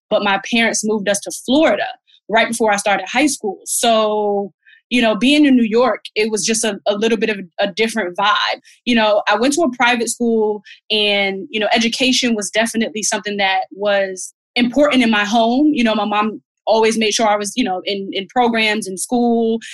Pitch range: 210-245 Hz